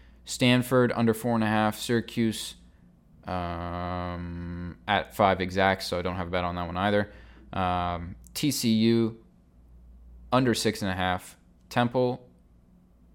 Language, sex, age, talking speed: English, male, 20-39, 130 wpm